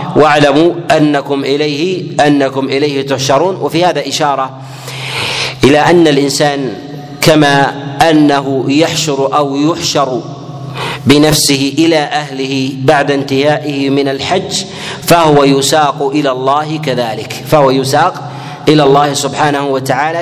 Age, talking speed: 40-59, 105 wpm